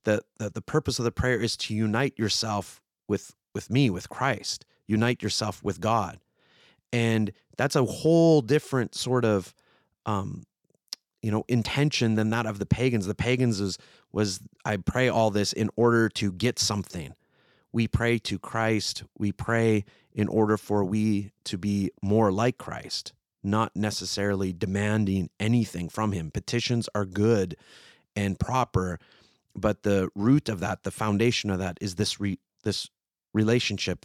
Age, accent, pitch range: 30-49, American, 100-120 Hz